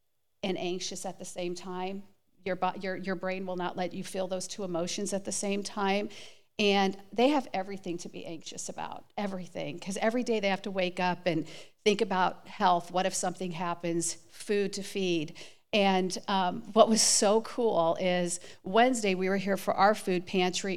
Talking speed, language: 190 wpm, English